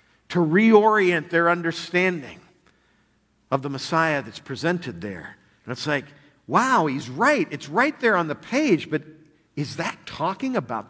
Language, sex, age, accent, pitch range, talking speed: English, male, 50-69, American, 130-210 Hz, 150 wpm